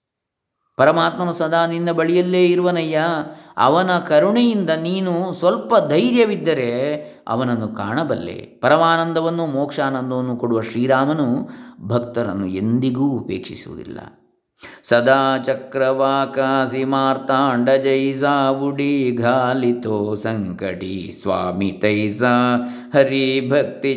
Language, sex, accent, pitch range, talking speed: Kannada, male, native, 120-160 Hz, 75 wpm